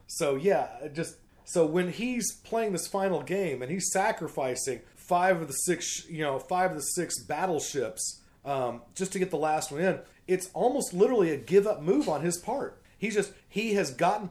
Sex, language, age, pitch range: male, English, 40-59, 150-190 Hz